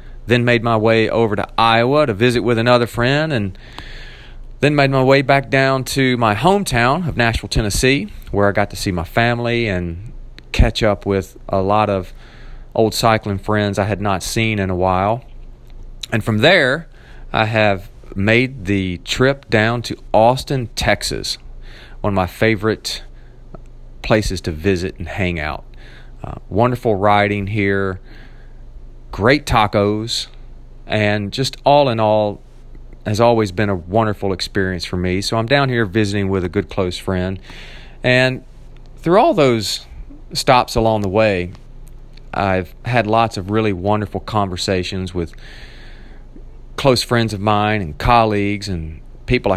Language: English